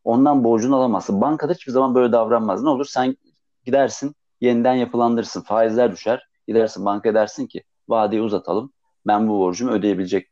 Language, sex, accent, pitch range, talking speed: Turkish, male, native, 110-185 Hz, 155 wpm